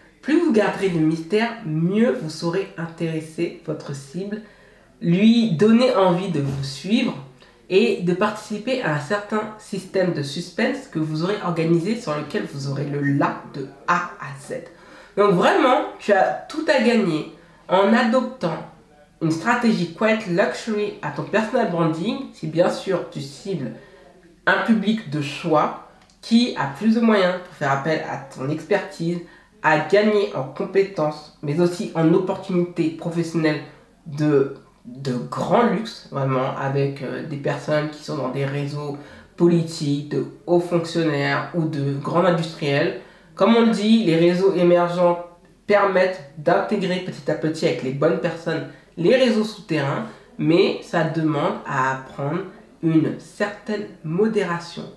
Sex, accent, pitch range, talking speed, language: female, French, 155-205 Hz, 150 wpm, French